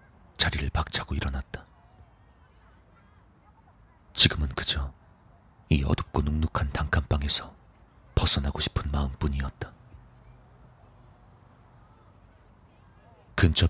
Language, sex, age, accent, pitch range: Korean, male, 40-59, native, 75-100 Hz